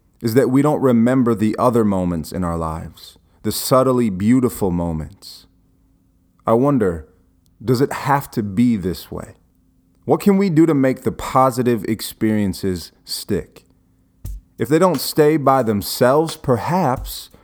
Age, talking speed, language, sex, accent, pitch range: 30-49, 140 wpm, English, male, American, 90-130 Hz